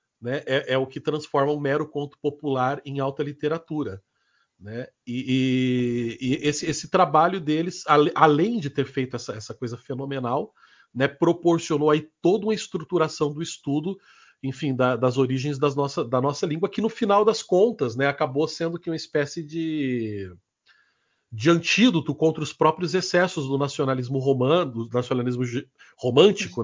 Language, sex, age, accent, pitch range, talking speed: Portuguese, male, 40-59, Brazilian, 130-170 Hz, 160 wpm